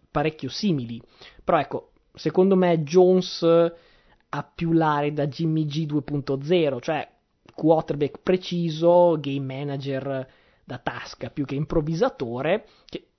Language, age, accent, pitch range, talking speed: Italian, 20-39, native, 140-165 Hz, 115 wpm